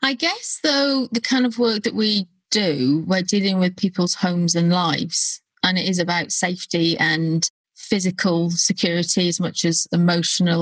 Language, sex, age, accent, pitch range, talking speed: English, female, 30-49, British, 170-210 Hz, 165 wpm